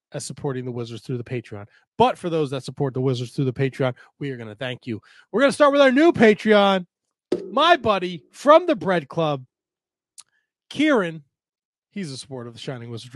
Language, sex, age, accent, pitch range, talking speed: English, male, 20-39, American, 145-195 Hz, 200 wpm